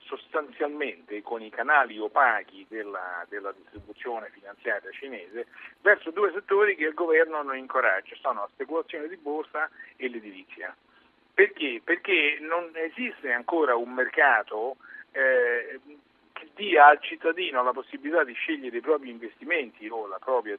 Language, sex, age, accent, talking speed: Italian, male, 50-69, native, 135 wpm